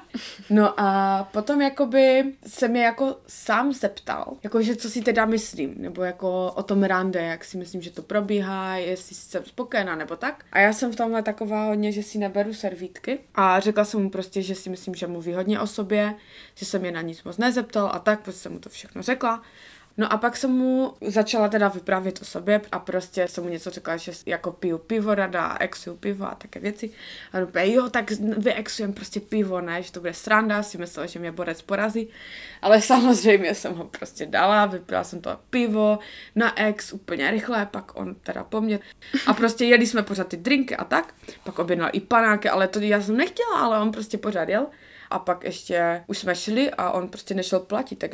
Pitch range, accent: 185-230 Hz, native